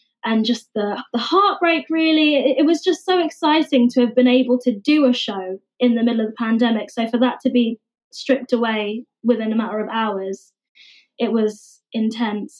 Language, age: English, 20-39